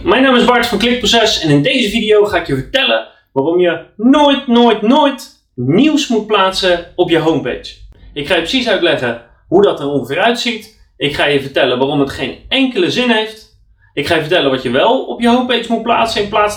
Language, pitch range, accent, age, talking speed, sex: Dutch, 140-220 Hz, Dutch, 30-49, 215 wpm, male